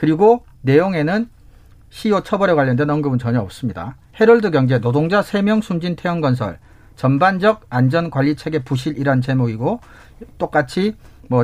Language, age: Korean, 40-59